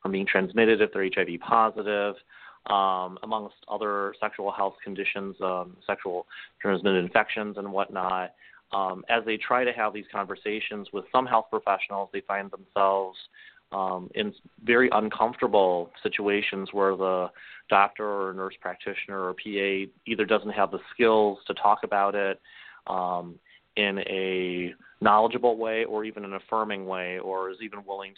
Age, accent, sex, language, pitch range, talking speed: 30-49, American, male, English, 95-110 Hz, 145 wpm